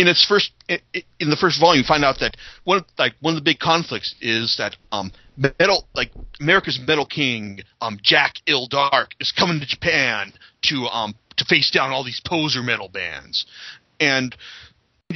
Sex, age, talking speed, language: male, 40-59, 180 wpm, English